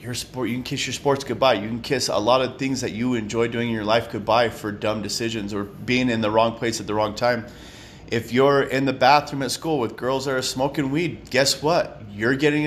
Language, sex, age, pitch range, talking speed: English, male, 30-49, 115-140 Hz, 250 wpm